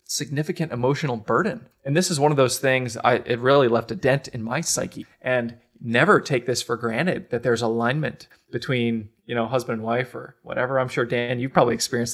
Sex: male